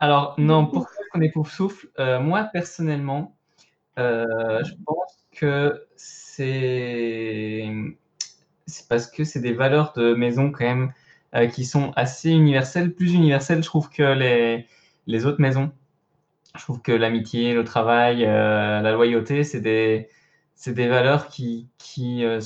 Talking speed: 150 wpm